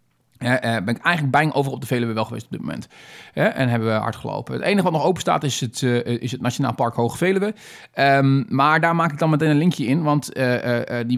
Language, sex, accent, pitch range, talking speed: Dutch, male, Dutch, 125-160 Hz, 230 wpm